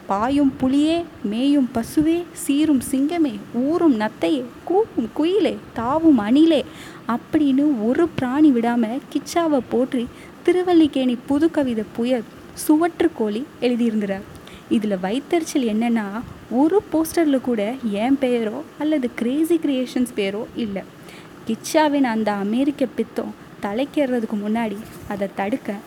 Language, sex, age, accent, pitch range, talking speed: Tamil, female, 20-39, native, 225-290 Hz, 105 wpm